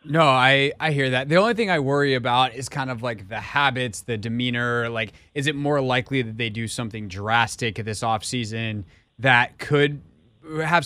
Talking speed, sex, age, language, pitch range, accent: 190 wpm, male, 20-39, English, 110-135 Hz, American